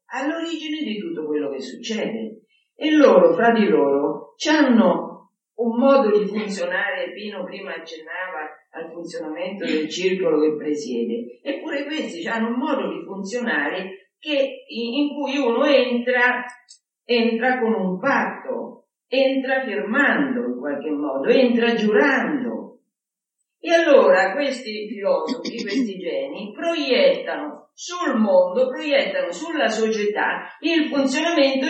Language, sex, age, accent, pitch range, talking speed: Italian, female, 50-69, native, 170-270 Hz, 115 wpm